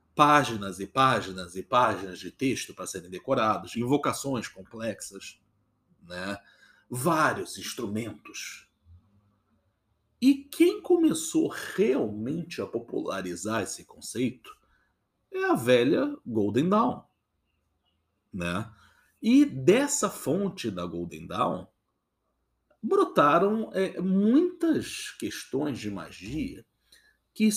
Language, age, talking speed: Portuguese, 50-69, 90 wpm